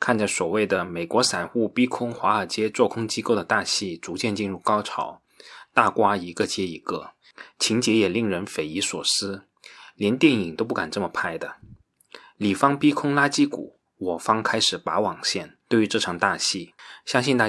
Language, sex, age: Chinese, male, 20-39